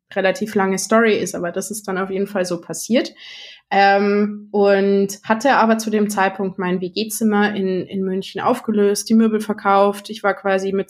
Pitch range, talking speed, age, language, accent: 195-225 Hz, 180 wpm, 20-39, German, German